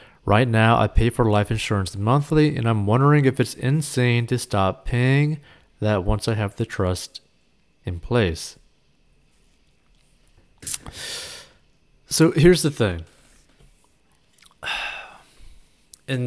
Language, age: English, 30-49